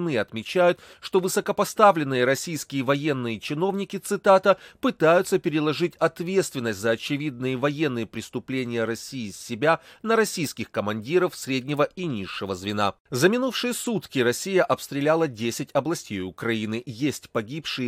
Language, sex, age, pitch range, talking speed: Russian, male, 30-49, 125-185 Hz, 110 wpm